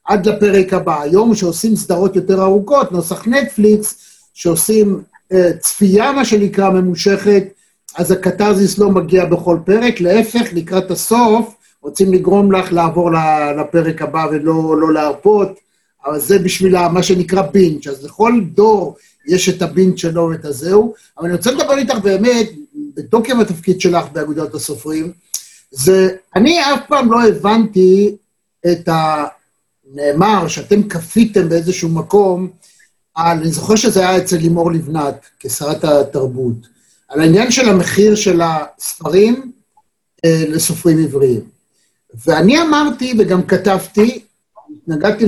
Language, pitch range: Hebrew, 165-210 Hz